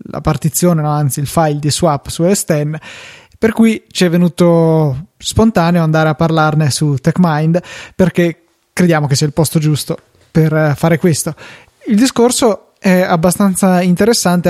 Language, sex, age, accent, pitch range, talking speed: Italian, male, 20-39, native, 155-190 Hz, 150 wpm